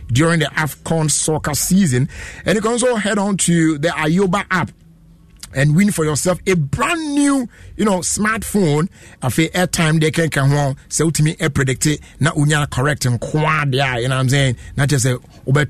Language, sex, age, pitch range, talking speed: English, male, 50-69, 135-190 Hz, 170 wpm